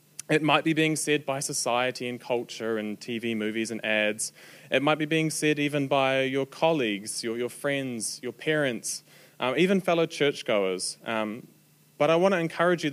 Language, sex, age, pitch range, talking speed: English, male, 20-39, 115-155 Hz, 180 wpm